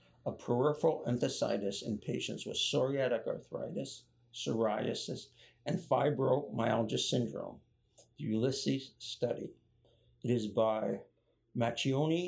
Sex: male